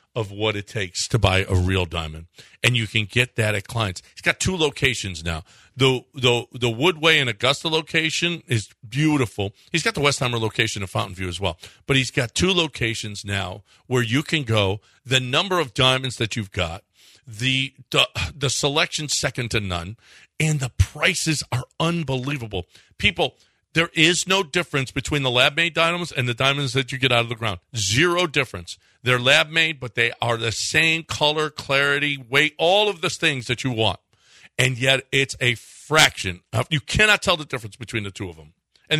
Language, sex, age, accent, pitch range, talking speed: English, male, 50-69, American, 110-155 Hz, 190 wpm